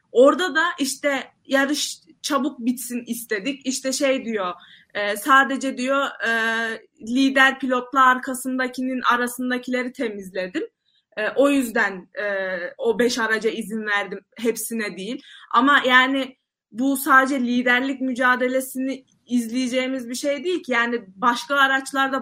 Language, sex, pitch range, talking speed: Turkish, female, 230-270 Hz, 110 wpm